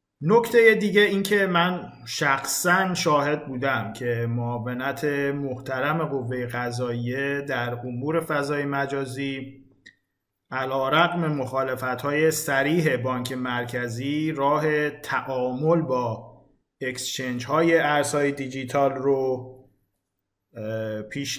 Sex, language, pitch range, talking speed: male, Persian, 125-145 Hz, 85 wpm